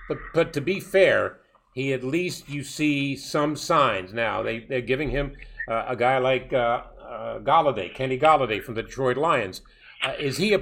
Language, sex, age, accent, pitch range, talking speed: English, male, 50-69, American, 125-160 Hz, 190 wpm